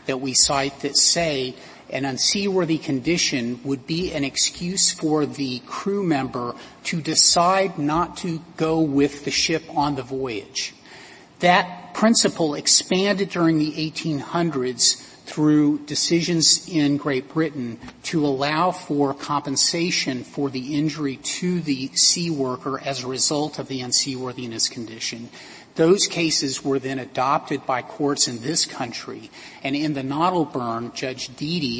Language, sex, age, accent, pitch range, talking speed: English, male, 40-59, American, 135-165 Hz, 135 wpm